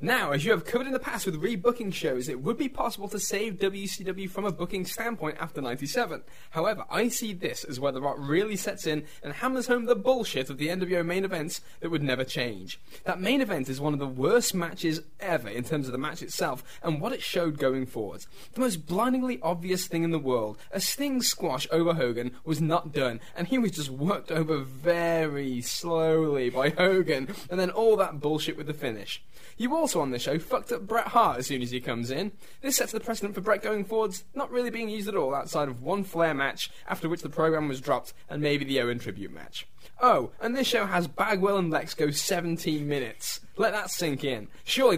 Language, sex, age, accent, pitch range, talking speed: English, male, 10-29, British, 145-200 Hz, 225 wpm